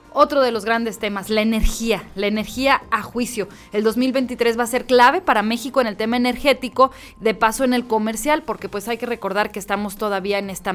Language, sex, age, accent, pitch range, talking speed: Spanish, female, 30-49, Mexican, 190-230 Hz, 210 wpm